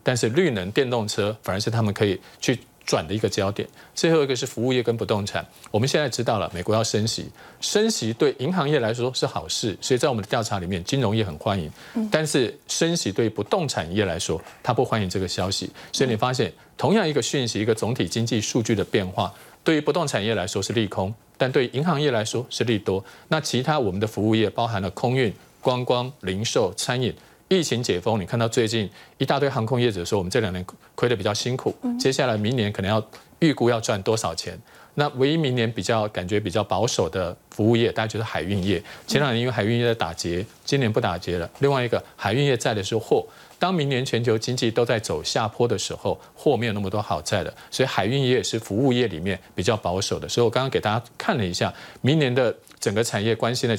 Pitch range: 100-130 Hz